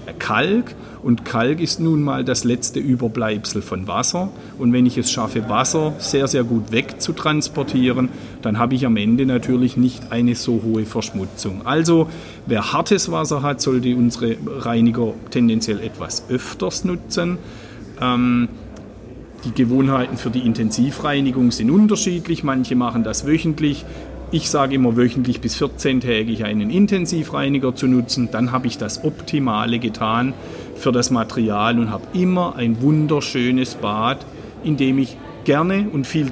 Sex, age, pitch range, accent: male, 40-59, 115-145 Hz, German